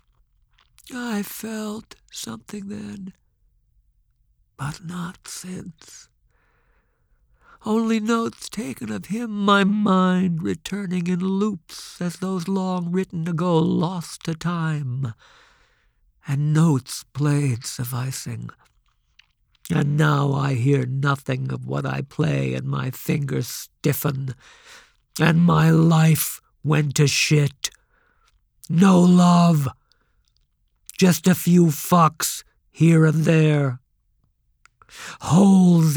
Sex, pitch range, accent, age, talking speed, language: male, 135-190 Hz, American, 60-79, 95 wpm, English